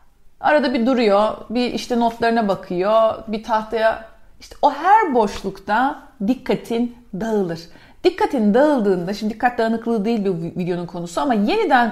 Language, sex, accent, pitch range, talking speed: Turkish, female, native, 195-255 Hz, 130 wpm